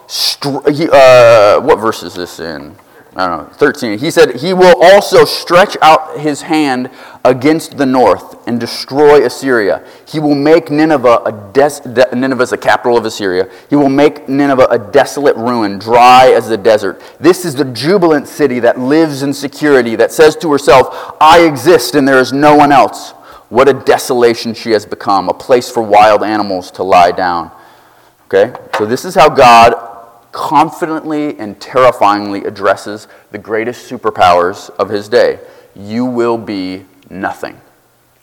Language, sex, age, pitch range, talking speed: English, male, 30-49, 115-150 Hz, 160 wpm